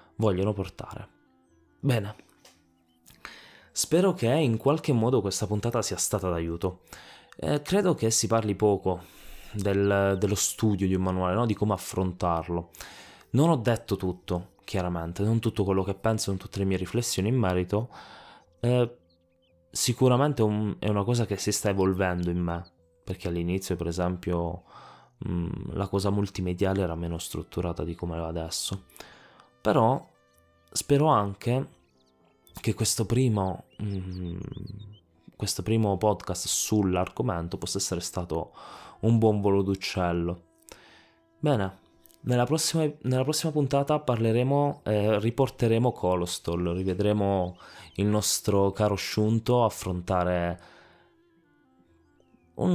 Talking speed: 115 wpm